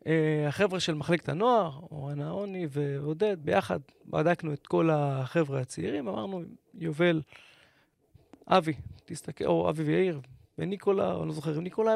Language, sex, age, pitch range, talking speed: Hebrew, male, 30-49, 150-185 Hz, 130 wpm